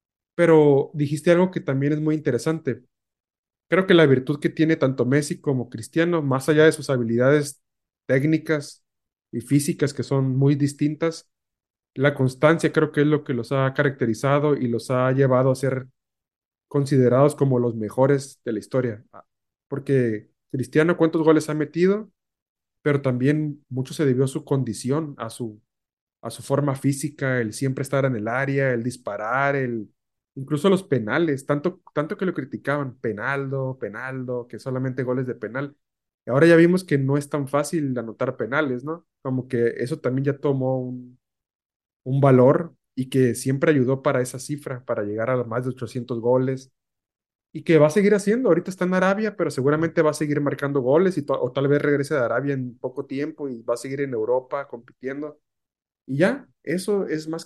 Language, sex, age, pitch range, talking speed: Spanish, male, 30-49, 130-155 Hz, 180 wpm